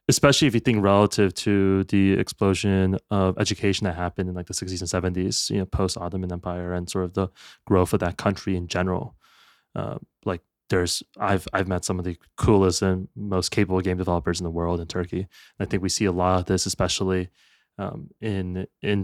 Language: English